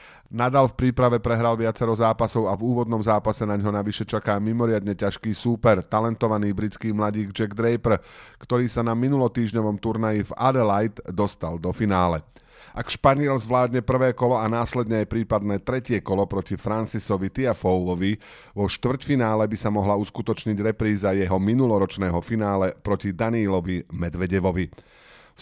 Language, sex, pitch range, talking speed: Slovak, male, 95-120 Hz, 140 wpm